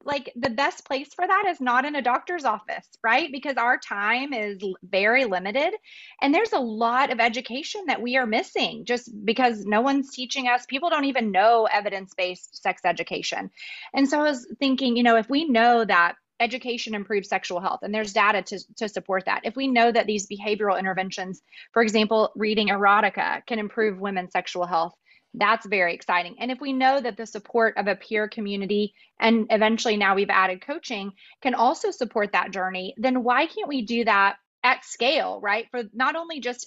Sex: female